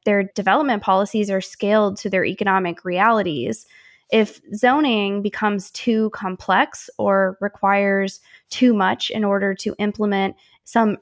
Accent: American